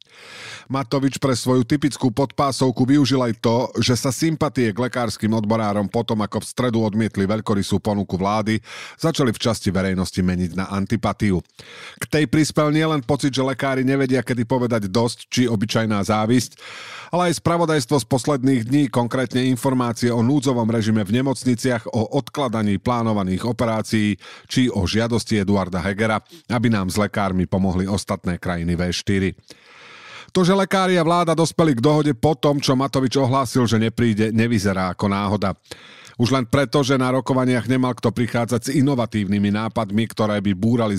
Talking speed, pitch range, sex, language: 155 wpm, 105-135 Hz, male, Slovak